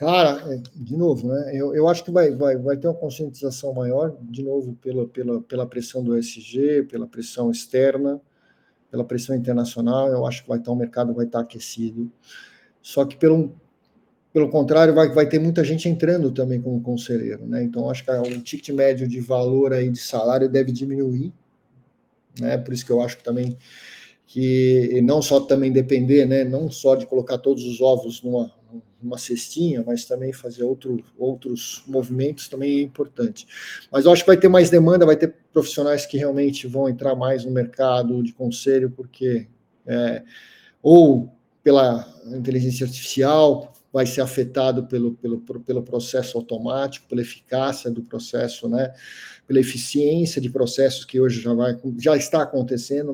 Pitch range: 125-140 Hz